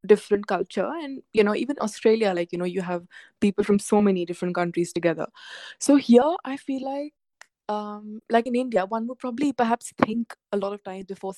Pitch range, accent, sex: 185-240 Hz, Indian, female